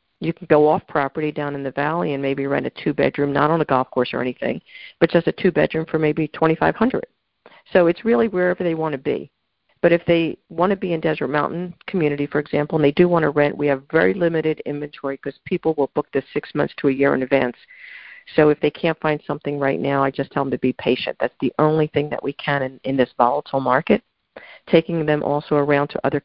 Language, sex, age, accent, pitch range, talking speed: English, female, 50-69, American, 140-160 Hz, 240 wpm